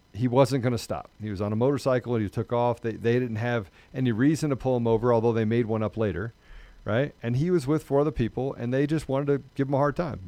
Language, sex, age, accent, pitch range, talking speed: English, male, 40-59, American, 115-145 Hz, 280 wpm